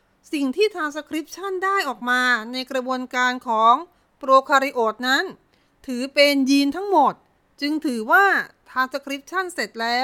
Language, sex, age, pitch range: Thai, female, 30-49, 230-300 Hz